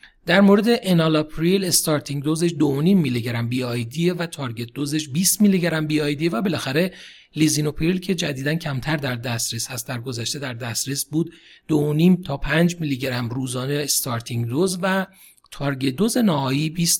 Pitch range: 135-175 Hz